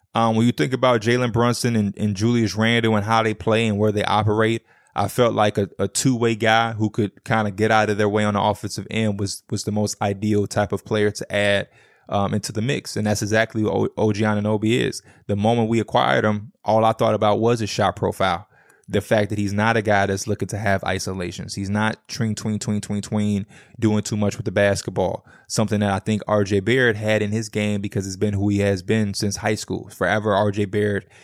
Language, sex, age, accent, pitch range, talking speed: English, male, 20-39, American, 105-115 Hz, 230 wpm